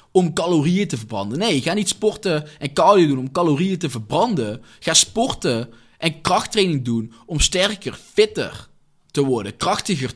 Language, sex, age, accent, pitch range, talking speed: Dutch, male, 20-39, Dutch, 130-190 Hz, 155 wpm